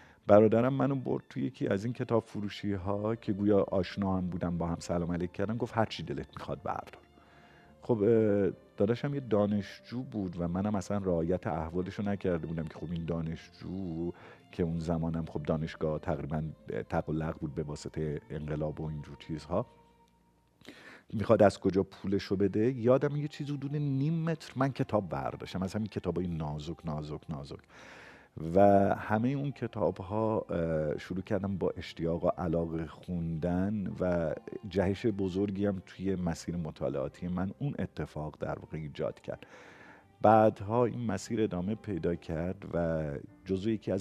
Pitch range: 85-105 Hz